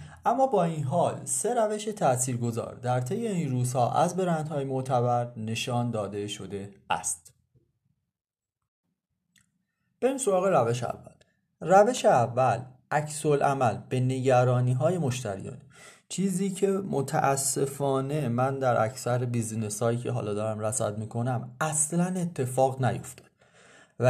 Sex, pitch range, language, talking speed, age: male, 120-170 Hz, Persian, 120 wpm, 30-49